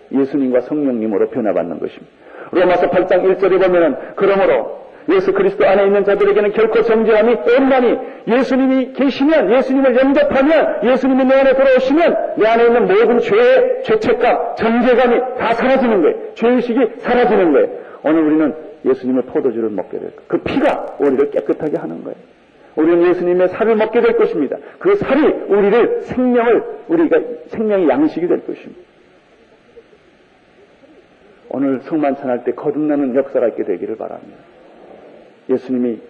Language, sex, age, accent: Korean, male, 50-69, native